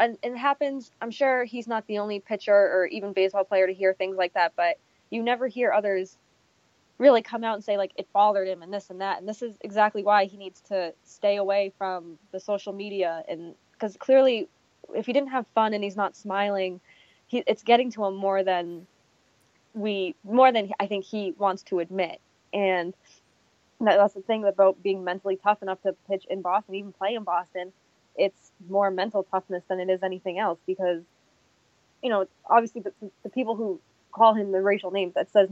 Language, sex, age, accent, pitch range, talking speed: English, female, 20-39, American, 190-220 Hz, 205 wpm